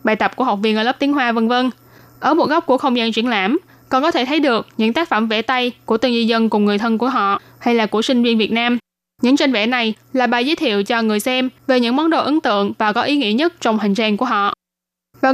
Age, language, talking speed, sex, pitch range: 10-29, Vietnamese, 285 wpm, female, 215-265 Hz